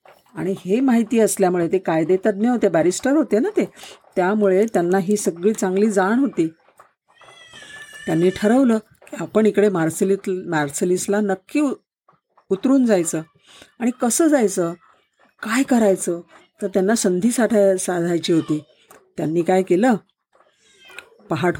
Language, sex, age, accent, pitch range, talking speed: Marathi, female, 50-69, native, 175-215 Hz, 115 wpm